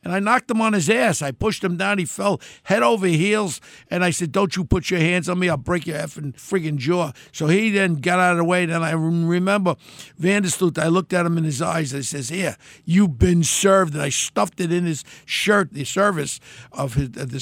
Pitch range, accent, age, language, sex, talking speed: 150-180 Hz, American, 60-79, English, male, 240 wpm